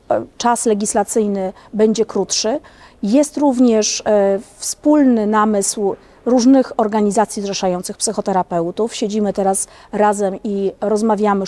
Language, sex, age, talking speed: Polish, female, 40-59, 90 wpm